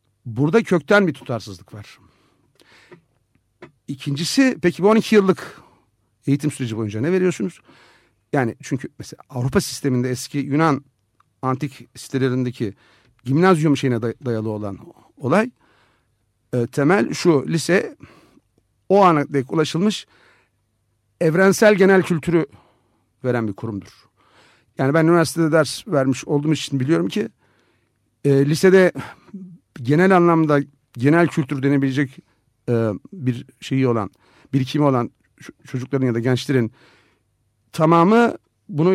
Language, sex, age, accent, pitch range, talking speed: Turkish, male, 50-69, native, 115-165 Hz, 110 wpm